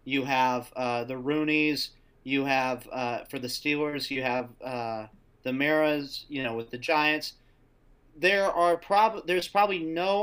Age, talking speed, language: 30-49, 160 wpm, English